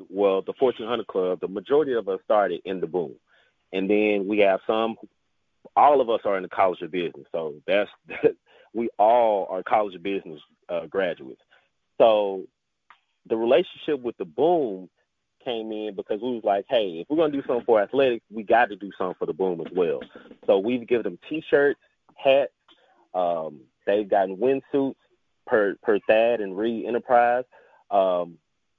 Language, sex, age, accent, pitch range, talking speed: English, male, 30-49, American, 100-135 Hz, 175 wpm